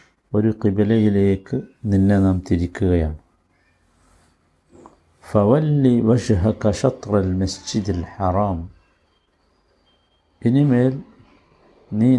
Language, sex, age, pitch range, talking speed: Malayalam, male, 60-79, 90-115 Hz, 70 wpm